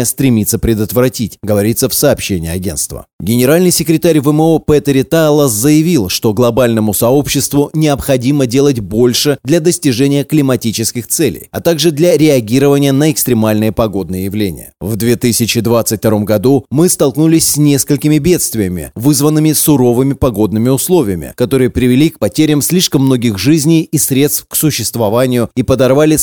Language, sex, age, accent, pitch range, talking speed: Russian, male, 30-49, native, 115-145 Hz, 125 wpm